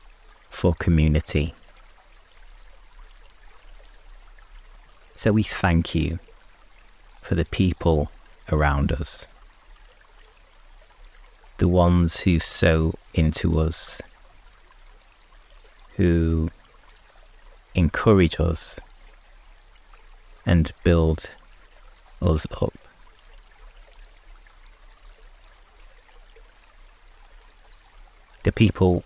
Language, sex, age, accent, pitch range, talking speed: English, male, 30-49, British, 80-90 Hz, 55 wpm